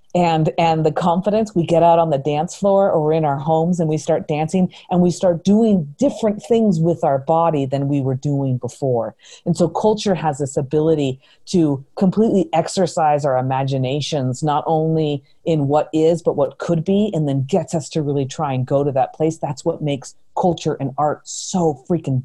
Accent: American